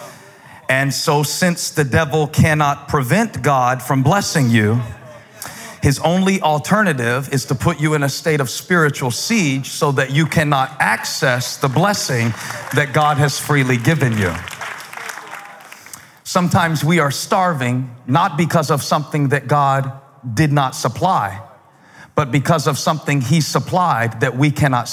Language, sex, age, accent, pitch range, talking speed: English, male, 40-59, American, 140-175 Hz, 140 wpm